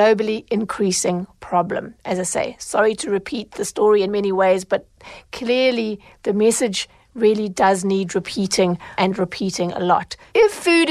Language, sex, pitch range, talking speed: English, female, 200-250 Hz, 155 wpm